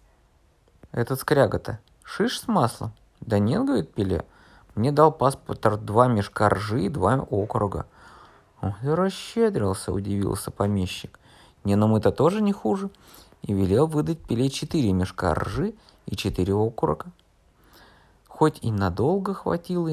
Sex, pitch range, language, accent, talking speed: male, 100-150 Hz, Russian, native, 130 wpm